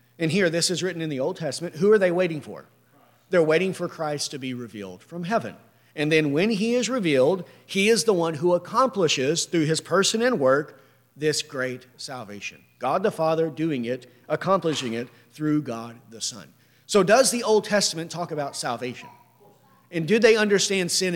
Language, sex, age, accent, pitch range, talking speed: English, male, 40-59, American, 155-225 Hz, 190 wpm